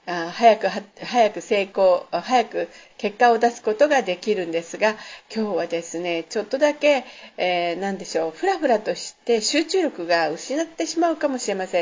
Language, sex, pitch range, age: Japanese, female, 190-295 Hz, 50-69